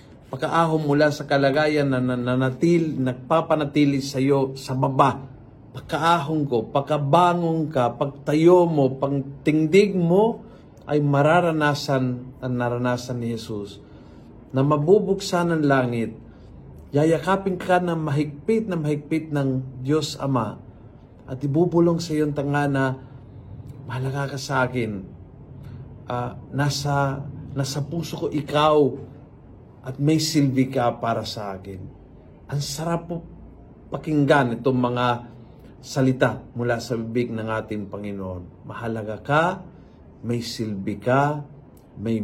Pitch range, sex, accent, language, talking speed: 120-150 Hz, male, native, Filipino, 120 wpm